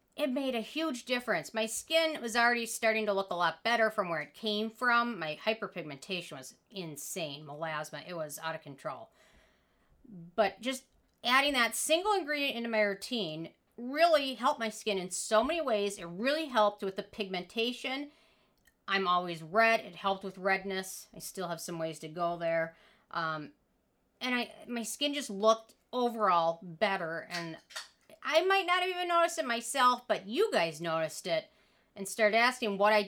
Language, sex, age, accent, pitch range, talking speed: English, female, 40-59, American, 180-255 Hz, 175 wpm